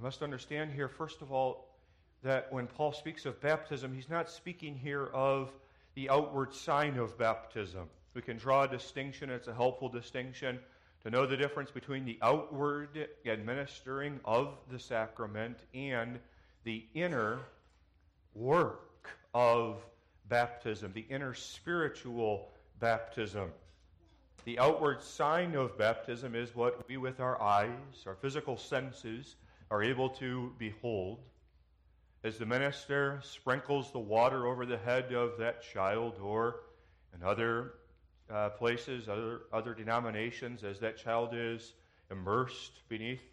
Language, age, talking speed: English, 40-59, 135 wpm